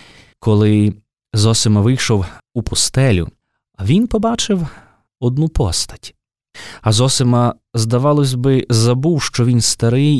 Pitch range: 105-145 Hz